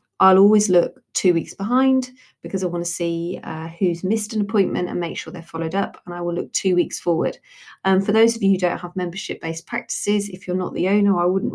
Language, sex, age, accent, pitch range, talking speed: English, female, 30-49, British, 170-200 Hz, 245 wpm